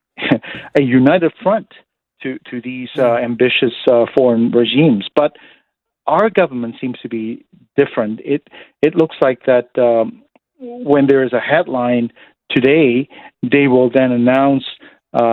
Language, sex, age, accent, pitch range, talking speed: English, male, 50-69, American, 120-145 Hz, 135 wpm